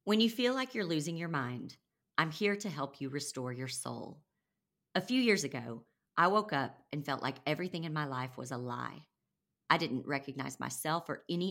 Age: 40-59